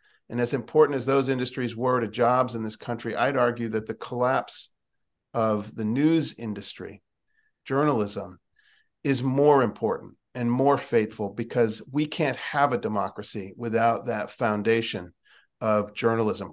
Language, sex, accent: English, male, American